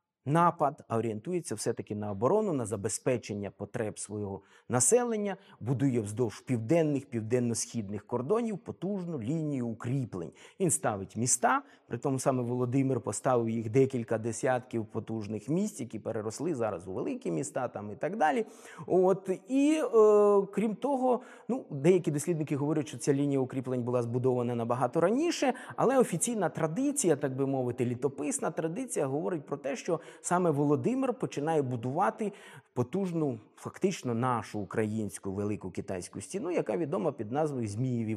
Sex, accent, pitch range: male, native, 115-175 Hz